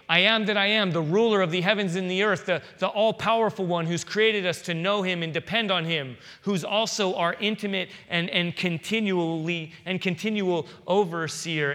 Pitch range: 135-175 Hz